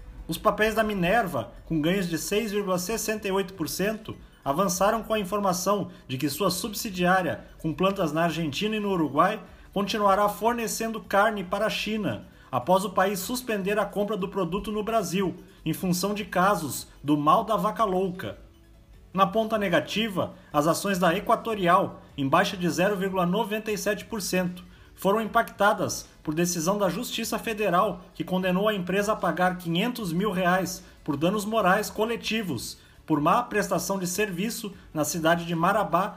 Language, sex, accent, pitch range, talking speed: Portuguese, male, Brazilian, 170-215 Hz, 145 wpm